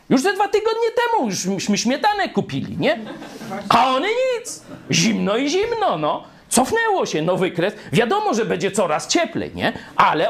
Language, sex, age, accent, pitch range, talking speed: Polish, male, 40-59, native, 150-235 Hz, 155 wpm